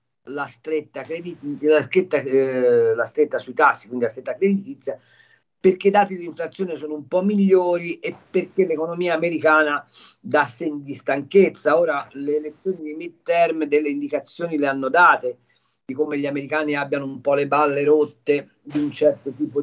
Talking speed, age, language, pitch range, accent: 170 wpm, 50-69, Italian, 135-175 Hz, native